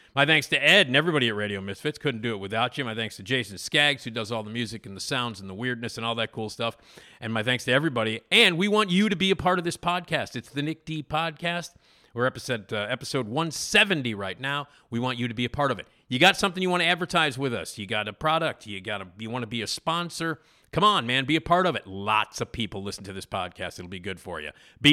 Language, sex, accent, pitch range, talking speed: English, male, American, 115-160 Hz, 280 wpm